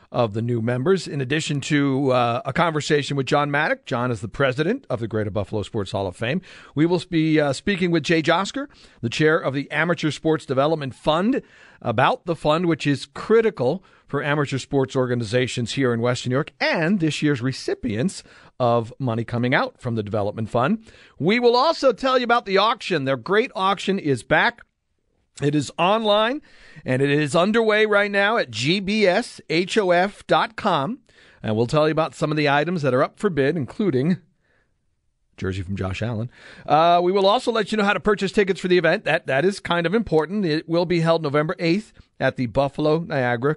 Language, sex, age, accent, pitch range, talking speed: English, male, 40-59, American, 130-195 Hz, 195 wpm